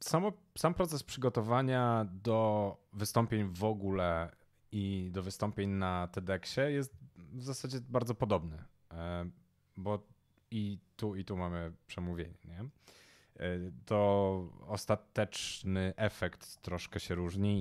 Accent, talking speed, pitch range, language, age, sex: native, 105 wpm, 85-105 Hz, Polish, 30-49, male